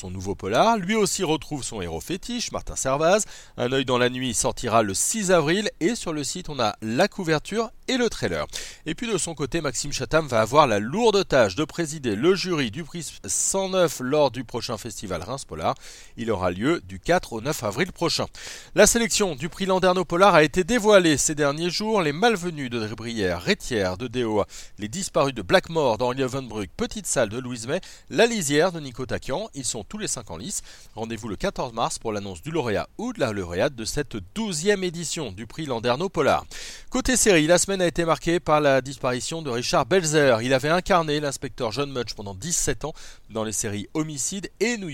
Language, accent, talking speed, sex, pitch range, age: French, French, 200 wpm, male, 115-180 Hz, 40-59